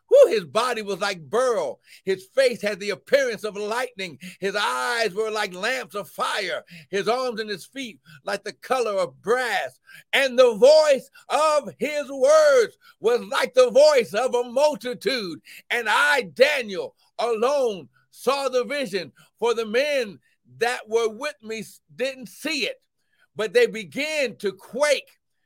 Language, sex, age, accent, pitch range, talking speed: English, male, 60-79, American, 195-280 Hz, 150 wpm